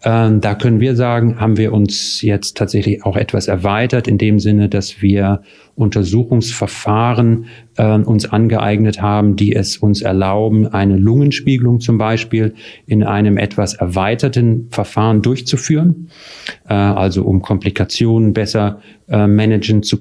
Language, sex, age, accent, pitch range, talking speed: German, male, 40-59, German, 105-120 Hz, 130 wpm